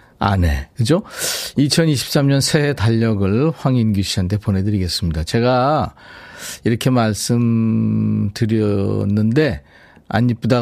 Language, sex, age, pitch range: Korean, male, 40-59, 100-155 Hz